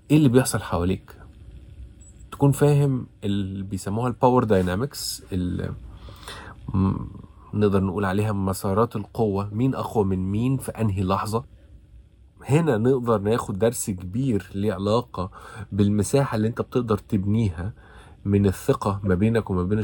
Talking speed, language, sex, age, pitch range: 120 wpm, Arabic, male, 20-39, 95-120 Hz